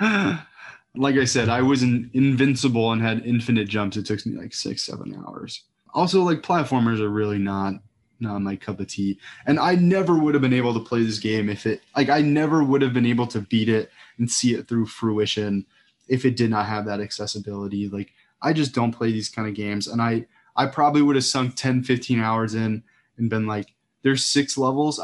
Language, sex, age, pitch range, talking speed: English, male, 20-39, 105-135 Hz, 215 wpm